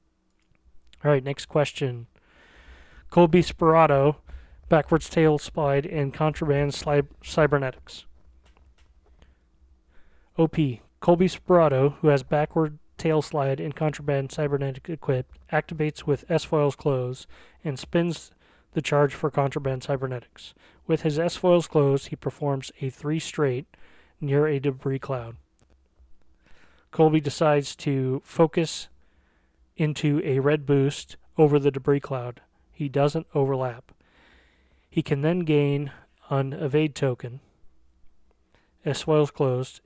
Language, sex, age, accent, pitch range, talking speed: English, male, 30-49, American, 130-155 Hz, 110 wpm